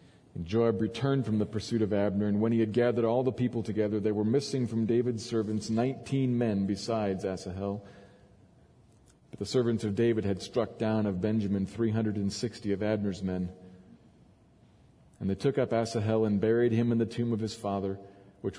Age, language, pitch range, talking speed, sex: 40-59, English, 100-125 Hz, 180 wpm, male